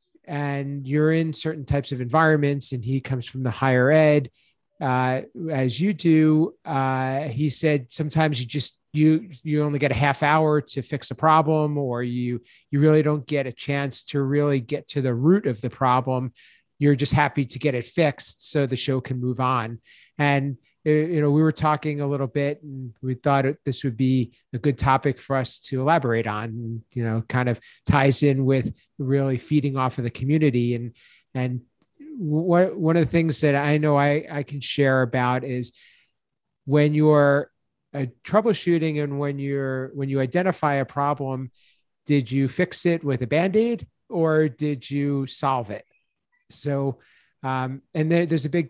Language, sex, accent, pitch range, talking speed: English, male, American, 130-150 Hz, 180 wpm